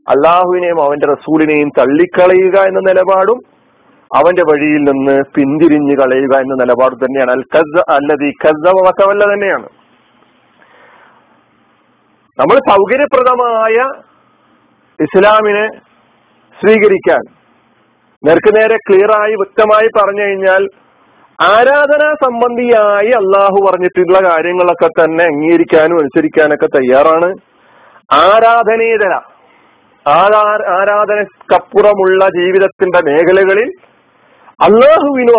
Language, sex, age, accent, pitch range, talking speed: Malayalam, male, 40-59, native, 170-230 Hz, 65 wpm